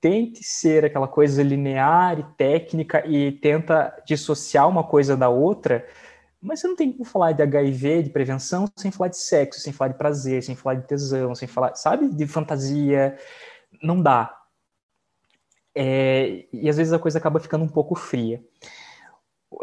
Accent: Brazilian